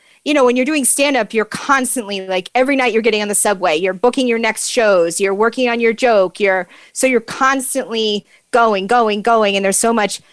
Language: English